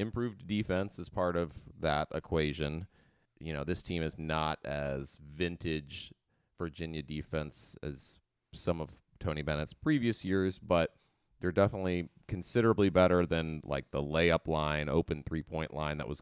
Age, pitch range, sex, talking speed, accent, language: 30-49, 75-100 Hz, male, 145 wpm, American, English